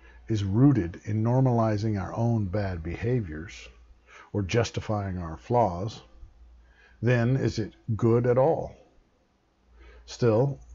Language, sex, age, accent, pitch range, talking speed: English, male, 60-79, American, 75-120 Hz, 105 wpm